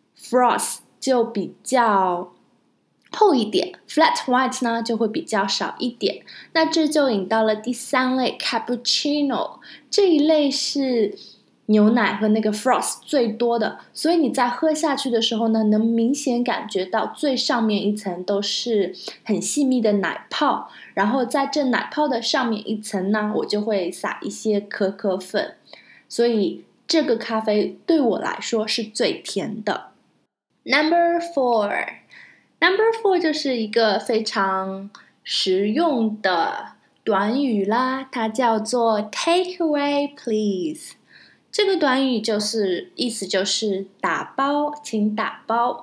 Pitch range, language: 210-280 Hz, Chinese